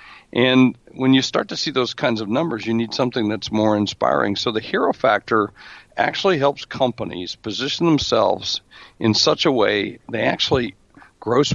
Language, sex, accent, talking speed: English, male, American, 165 wpm